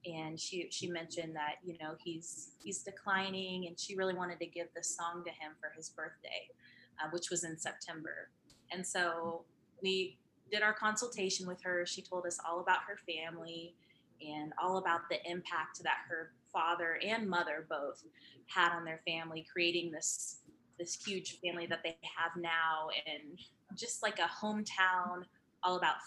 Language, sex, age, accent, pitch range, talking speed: English, female, 20-39, American, 165-190 Hz, 170 wpm